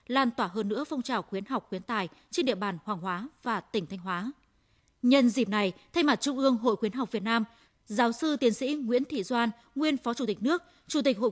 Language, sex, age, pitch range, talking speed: Vietnamese, female, 20-39, 215-270 Hz, 245 wpm